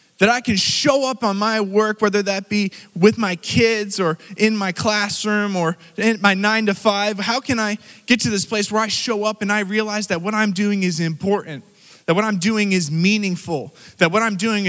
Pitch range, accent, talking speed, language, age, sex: 170-215 Hz, American, 220 wpm, English, 20-39, male